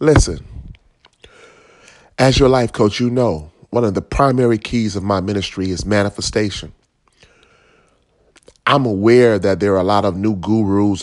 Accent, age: American, 30-49